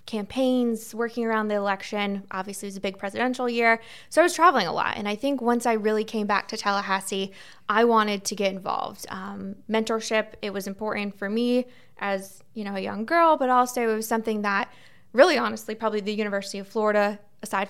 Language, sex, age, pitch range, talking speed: English, female, 20-39, 200-230 Hz, 205 wpm